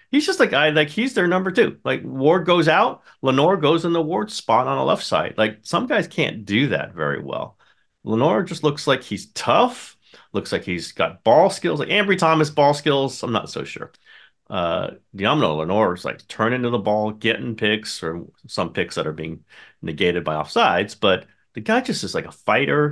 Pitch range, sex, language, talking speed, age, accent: 100-145 Hz, male, English, 210 wpm, 40-59, American